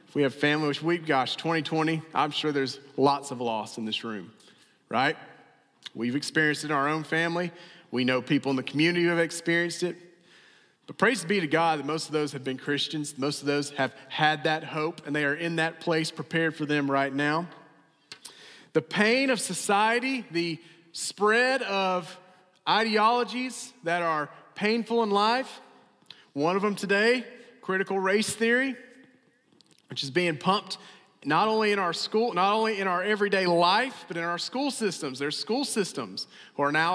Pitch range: 155-215 Hz